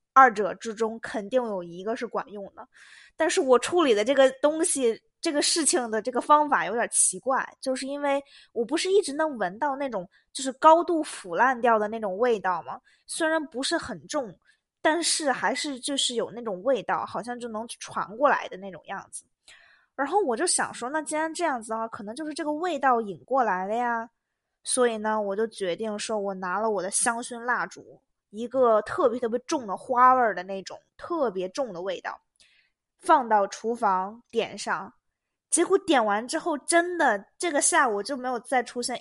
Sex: female